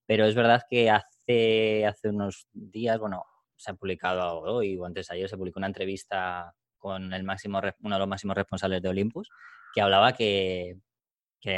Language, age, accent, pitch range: Spanish, 20-39, Spanish, 95-120 Hz